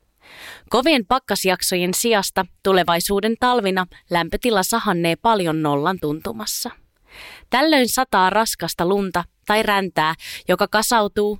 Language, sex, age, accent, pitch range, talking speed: Finnish, female, 20-39, native, 165-215 Hz, 95 wpm